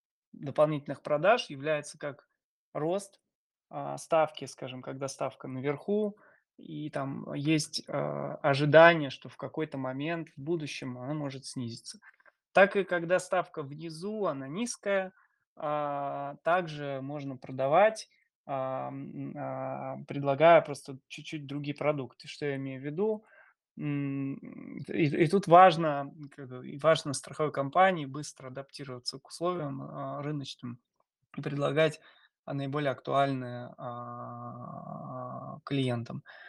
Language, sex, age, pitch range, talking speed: Russian, male, 20-39, 135-155 Hz, 100 wpm